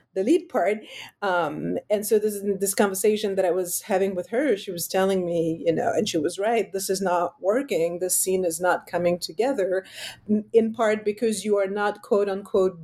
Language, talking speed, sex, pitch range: English, 200 wpm, female, 185-225 Hz